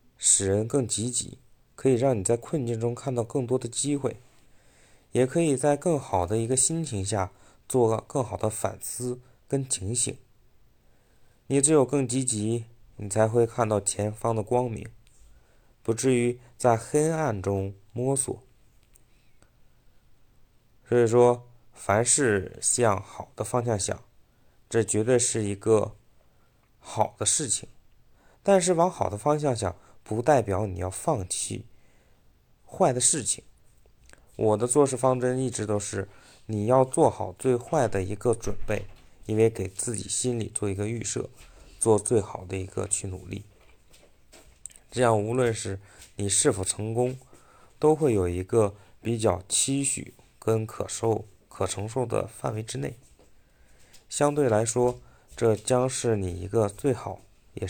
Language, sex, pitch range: Chinese, male, 100-125 Hz